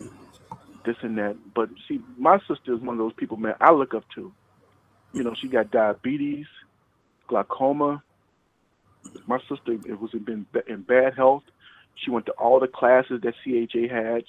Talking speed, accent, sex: 170 wpm, American, male